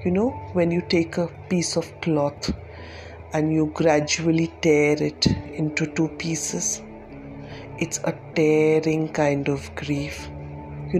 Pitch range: 140-165 Hz